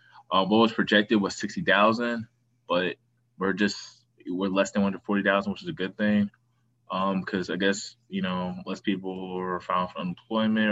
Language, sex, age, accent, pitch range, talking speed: English, male, 20-39, American, 95-115 Hz, 170 wpm